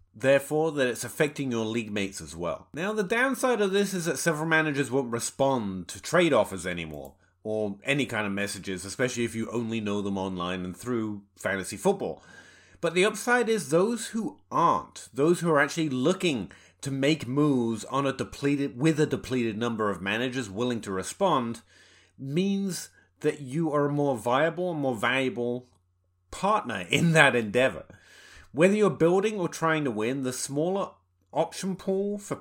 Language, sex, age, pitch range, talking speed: English, male, 30-49, 115-165 Hz, 170 wpm